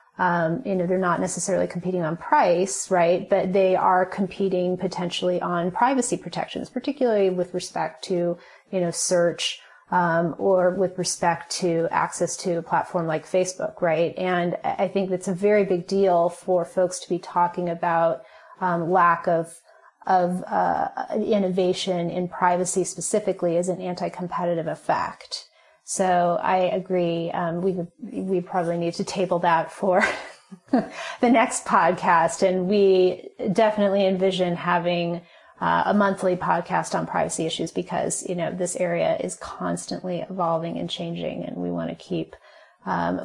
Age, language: 30-49, English